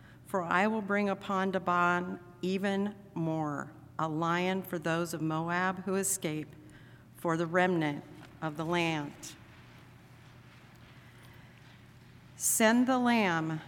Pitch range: 150-185 Hz